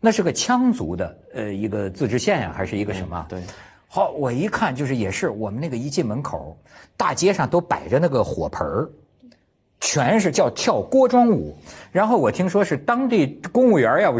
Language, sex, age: Chinese, male, 50-69